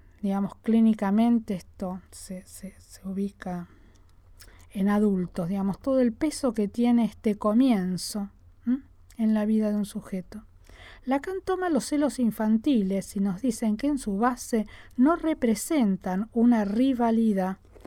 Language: Spanish